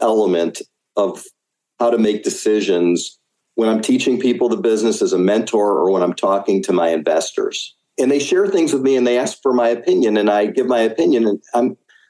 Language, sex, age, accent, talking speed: English, male, 50-69, American, 205 wpm